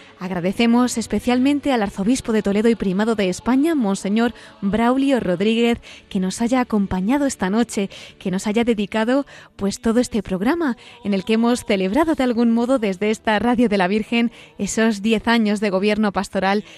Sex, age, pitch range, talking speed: female, 20-39, 200-245 Hz, 170 wpm